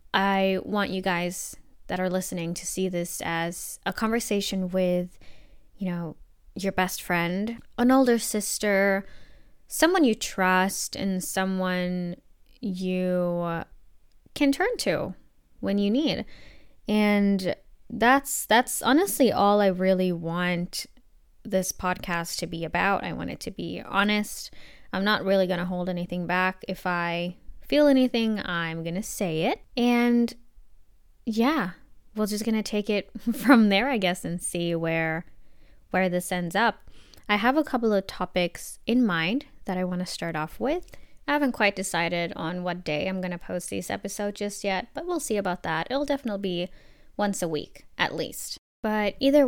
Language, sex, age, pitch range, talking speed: English, female, 10-29, 180-230 Hz, 160 wpm